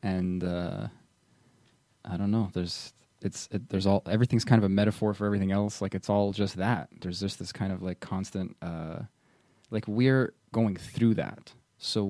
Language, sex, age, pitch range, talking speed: English, male, 20-39, 100-120 Hz, 185 wpm